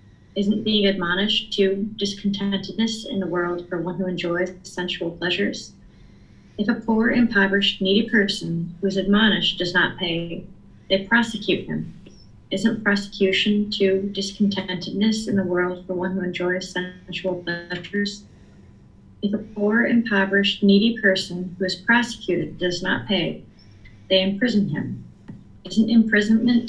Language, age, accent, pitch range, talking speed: English, 30-49, American, 180-210 Hz, 135 wpm